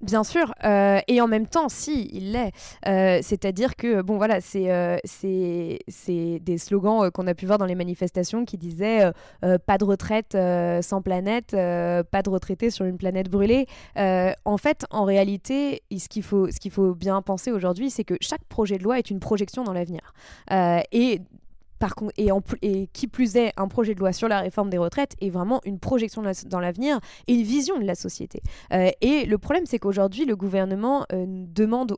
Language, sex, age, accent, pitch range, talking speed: French, female, 20-39, French, 185-230 Hz, 220 wpm